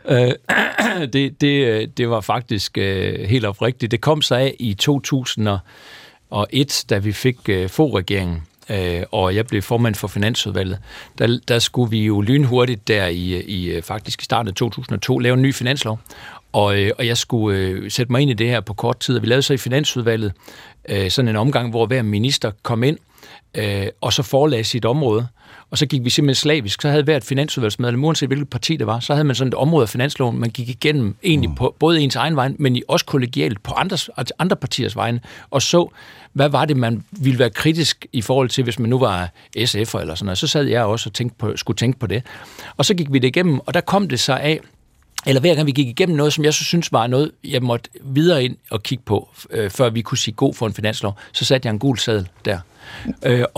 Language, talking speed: Danish, 225 wpm